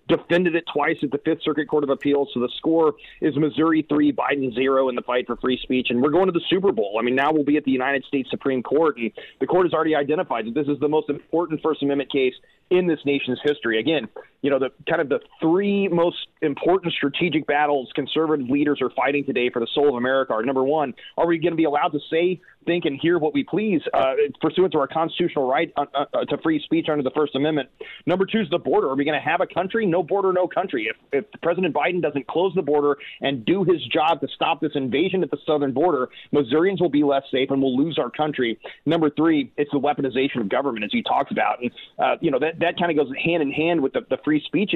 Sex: male